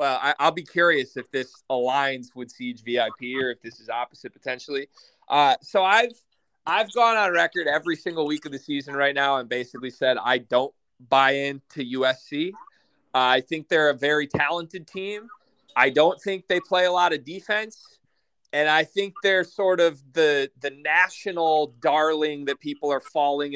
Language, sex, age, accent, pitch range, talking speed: English, male, 30-49, American, 140-210 Hz, 180 wpm